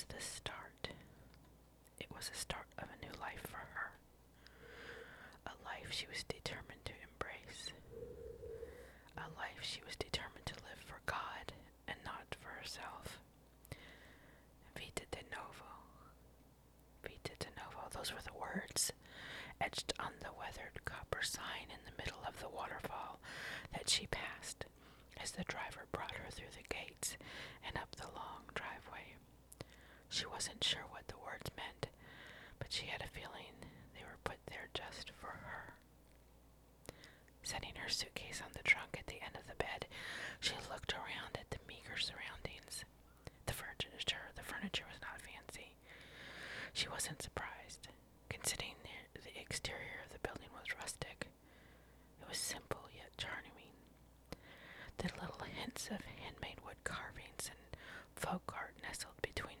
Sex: male